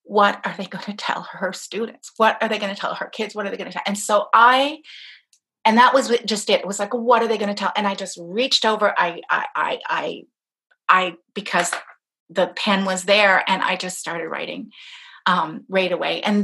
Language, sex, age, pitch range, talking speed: English, female, 30-49, 195-230 Hz, 230 wpm